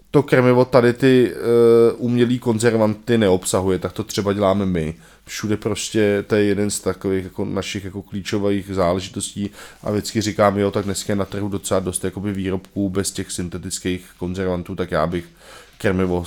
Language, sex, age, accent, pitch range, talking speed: Czech, male, 20-39, native, 95-115 Hz, 160 wpm